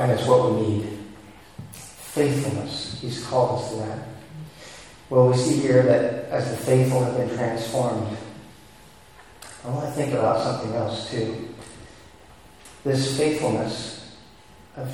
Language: English